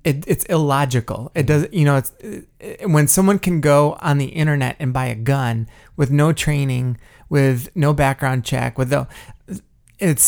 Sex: male